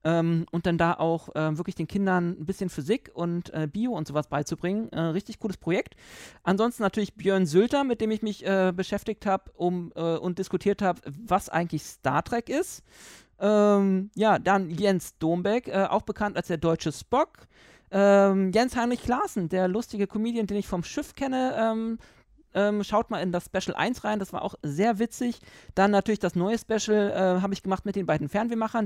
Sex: male